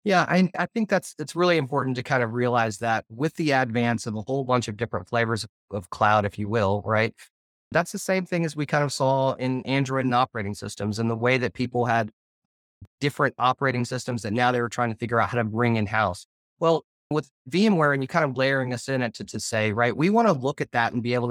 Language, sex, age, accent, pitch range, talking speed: English, male, 30-49, American, 115-150 Hz, 250 wpm